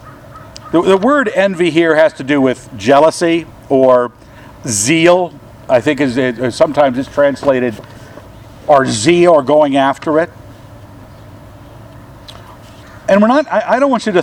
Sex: male